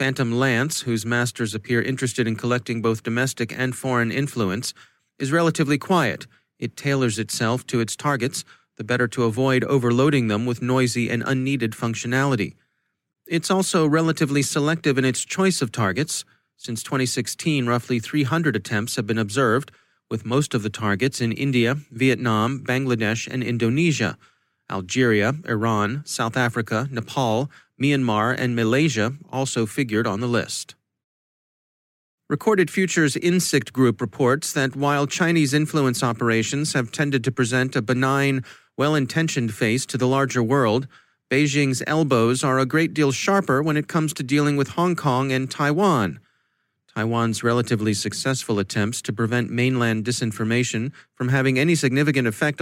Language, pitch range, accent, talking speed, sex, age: English, 115-145 Hz, American, 145 wpm, male, 30-49